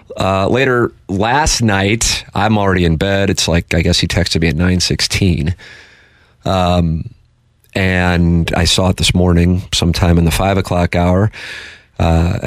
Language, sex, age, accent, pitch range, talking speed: English, male, 40-59, American, 85-100 Hz, 170 wpm